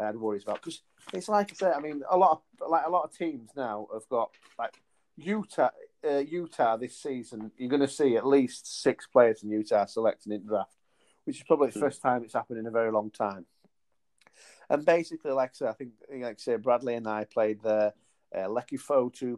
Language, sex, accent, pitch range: English, male, British, 110-135 Hz